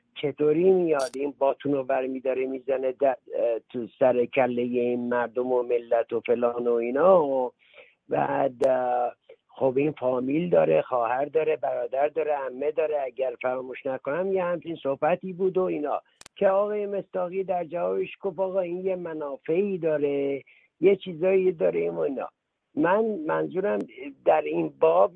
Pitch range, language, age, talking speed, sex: 130-180 Hz, Persian, 50-69, 140 wpm, male